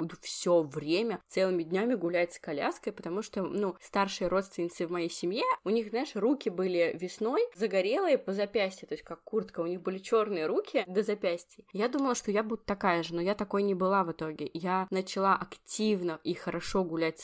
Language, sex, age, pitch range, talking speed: Russian, female, 20-39, 165-205 Hz, 195 wpm